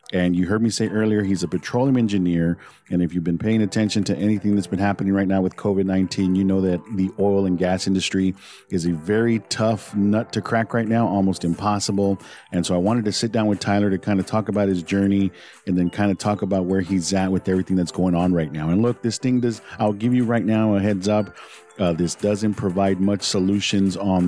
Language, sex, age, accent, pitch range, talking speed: English, male, 40-59, American, 90-105 Hz, 235 wpm